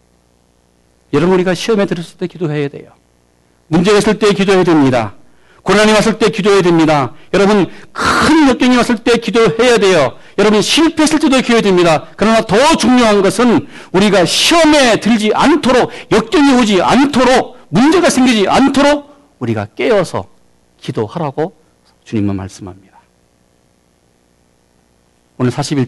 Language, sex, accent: Korean, male, native